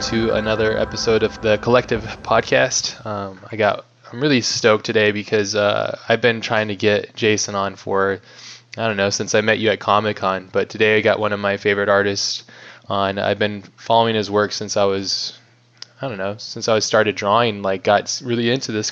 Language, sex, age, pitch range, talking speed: English, male, 20-39, 100-115 Hz, 200 wpm